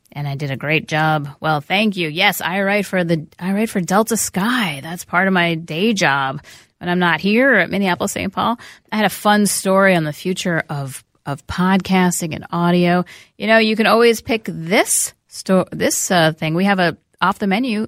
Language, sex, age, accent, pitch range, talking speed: English, female, 30-49, American, 170-210 Hz, 210 wpm